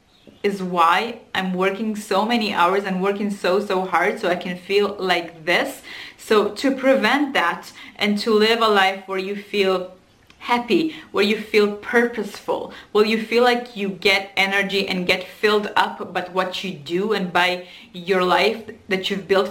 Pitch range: 185-220 Hz